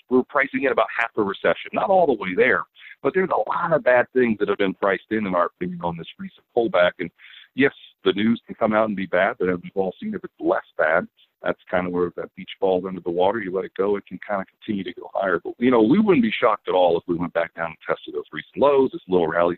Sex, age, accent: male, 50-69, American